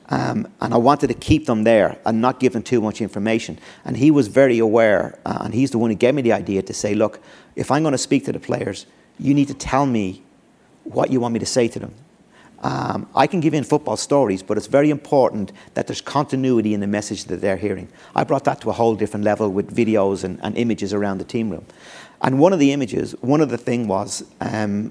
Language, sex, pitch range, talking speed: English, male, 110-135 Hz, 245 wpm